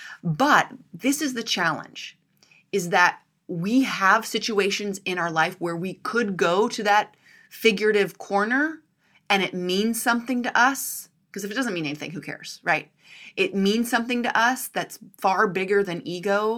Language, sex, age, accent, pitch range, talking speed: English, female, 30-49, American, 175-225 Hz, 165 wpm